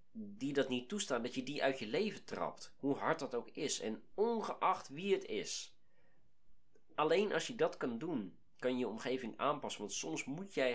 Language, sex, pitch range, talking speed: Dutch, male, 120-170 Hz, 200 wpm